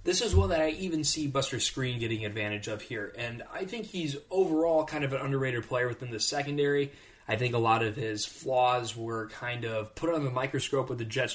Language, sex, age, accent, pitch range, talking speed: English, male, 20-39, American, 110-140 Hz, 225 wpm